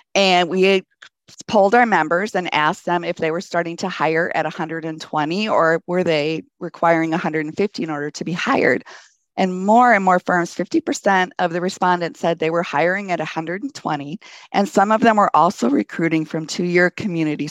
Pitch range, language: 155-185 Hz, English